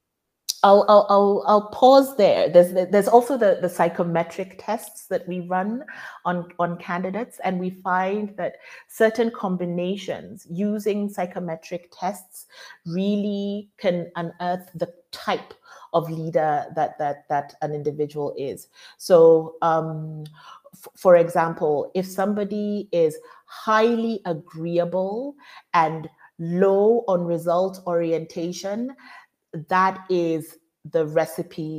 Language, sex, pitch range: English, female, 160-200 Hz